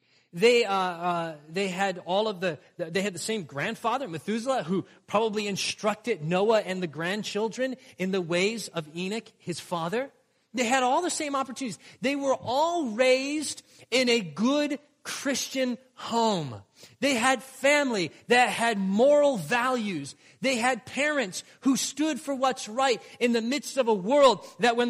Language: English